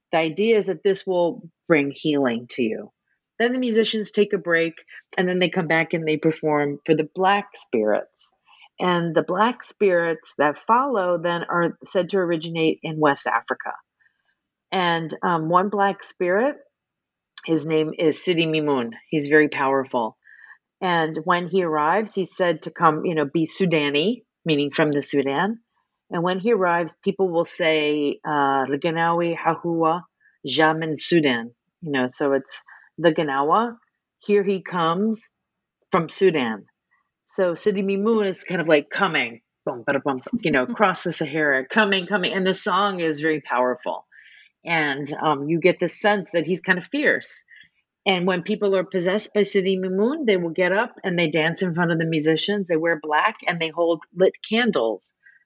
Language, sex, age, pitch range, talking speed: English, female, 40-59, 155-195 Hz, 170 wpm